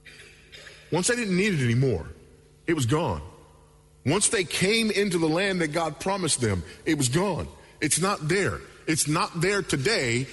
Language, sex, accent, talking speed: English, male, American, 170 wpm